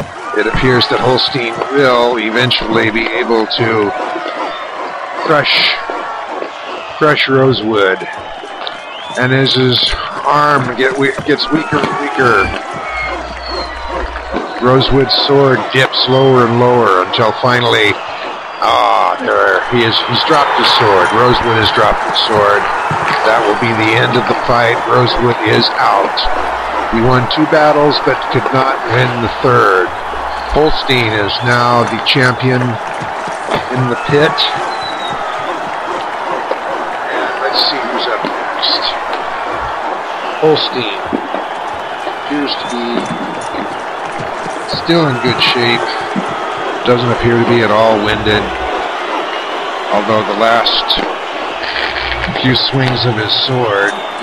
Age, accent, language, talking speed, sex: 50-69, American, English, 110 wpm, male